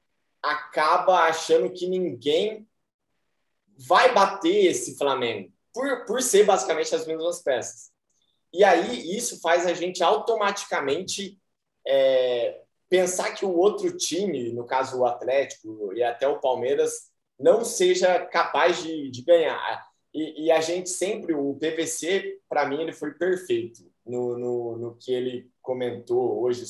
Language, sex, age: Portuguese, male, 20-39